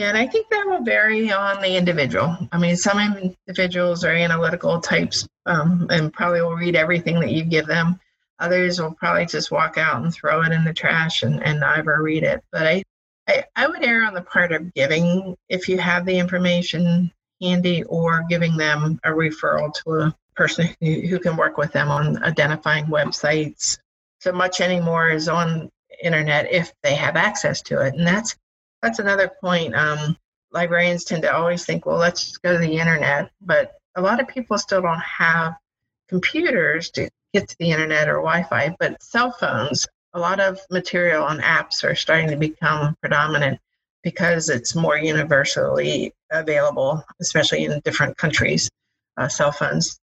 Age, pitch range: 50-69, 155-180 Hz